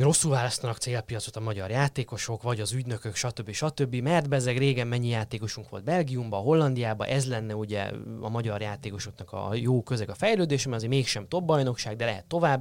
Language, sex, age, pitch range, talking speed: Hungarian, male, 20-39, 110-140 Hz, 175 wpm